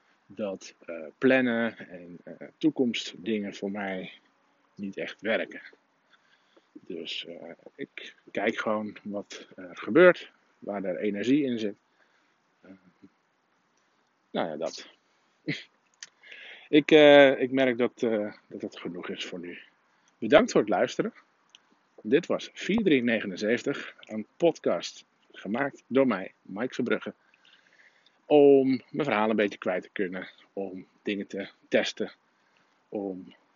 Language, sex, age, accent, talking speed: Dutch, male, 50-69, Dutch, 115 wpm